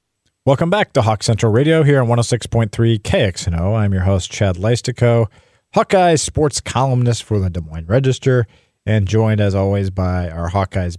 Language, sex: English, male